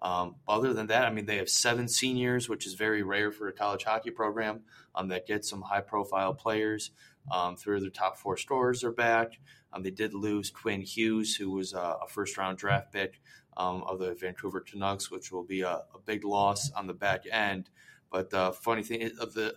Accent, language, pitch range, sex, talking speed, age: American, English, 95-110 Hz, male, 210 wpm, 20-39